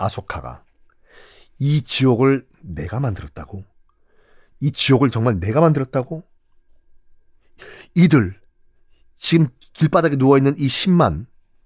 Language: Korean